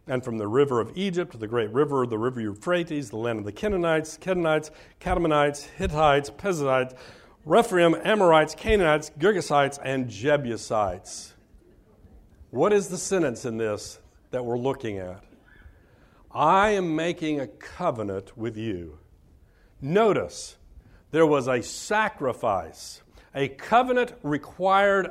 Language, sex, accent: English, male, American